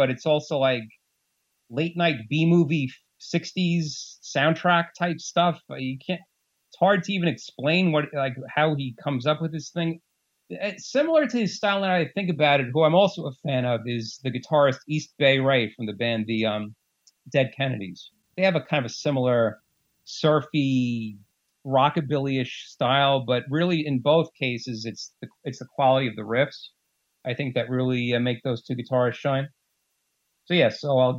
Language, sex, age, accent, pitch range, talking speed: English, male, 30-49, American, 125-160 Hz, 180 wpm